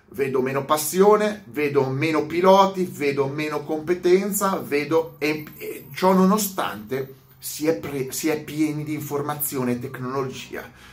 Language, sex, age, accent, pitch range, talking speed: Italian, male, 30-49, native, 125-180 Hz, 130 wpm